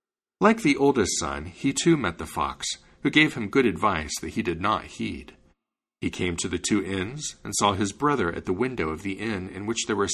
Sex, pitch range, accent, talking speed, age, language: male, 85-130 Hz, American, 230 wpm, 50-69, English